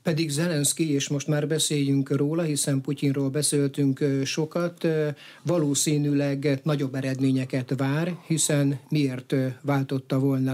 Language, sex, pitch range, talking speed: Hungarian, male, 135-155 Hz, 110 wpm